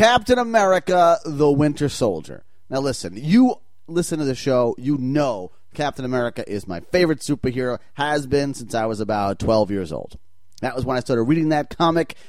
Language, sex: English, male